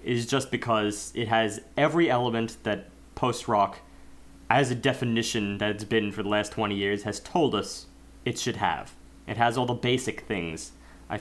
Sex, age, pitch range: male, 30-49, 95-130 Hz